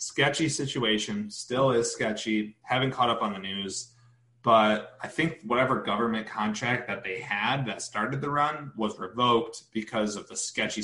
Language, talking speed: English, 165 wpm